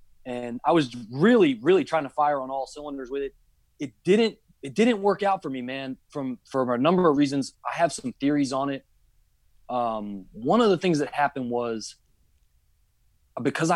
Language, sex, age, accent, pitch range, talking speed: English, male, 20-39, American, 120-155 Hz, 190 wpm